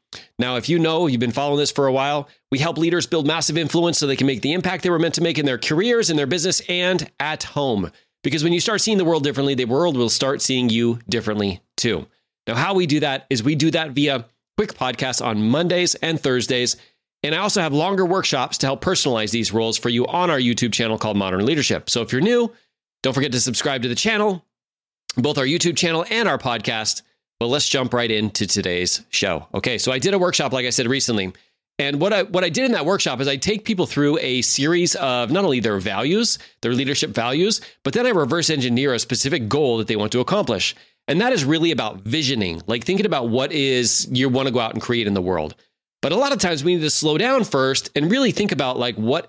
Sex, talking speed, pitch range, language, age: male, 240 wpm, 120-175 Hz, English, 30-49